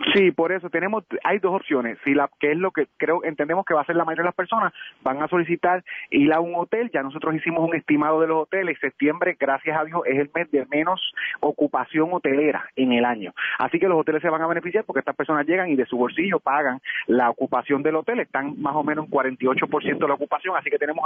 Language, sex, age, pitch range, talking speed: Spanish, male, 30-49, 125-160 Hz, 245 wpm